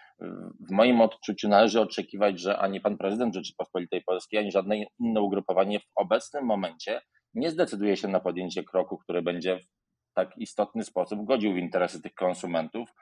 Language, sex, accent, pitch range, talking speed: Polish, male, native, 90-110 Hz, 160 wpm